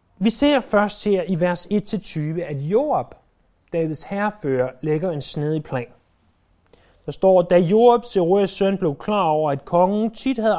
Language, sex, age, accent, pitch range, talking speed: Danish, male, 30-49, native, 155-205 Hz, 160 wpm